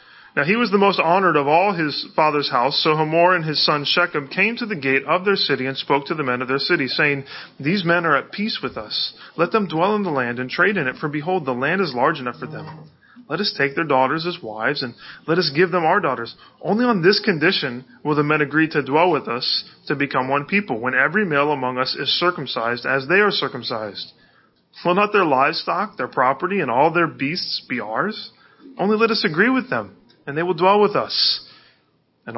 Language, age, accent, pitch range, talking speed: English, 30-49, American, 135-180 Hz, 230 wpm